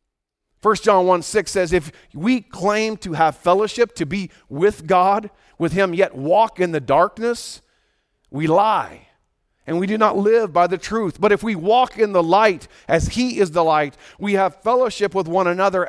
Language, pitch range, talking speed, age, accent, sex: English, 175-220 Hz, 190 wpm, 40-59, American, male